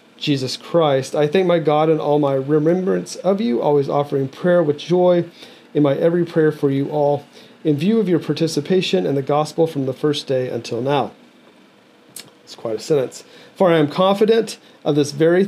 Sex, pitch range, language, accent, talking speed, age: male, 130-165 Hz, English, American, 190 wpm, 40-59